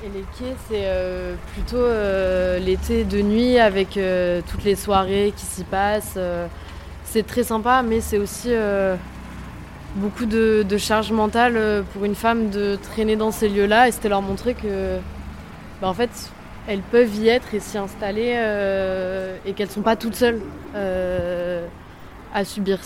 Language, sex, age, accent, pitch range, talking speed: French, female, 20-39, French, 195-235 Hz, 145 wpm